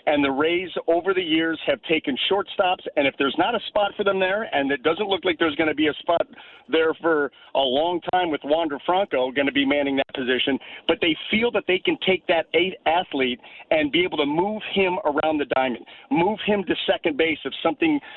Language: English